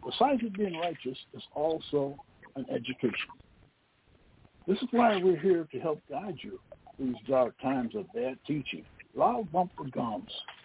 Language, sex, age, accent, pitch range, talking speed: English, male, 60-79, American, 130-195 Hz, 150 wpm